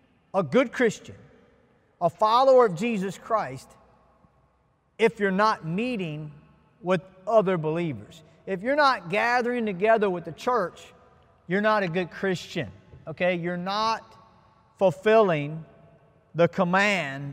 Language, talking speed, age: English, 120 wpm, 40-59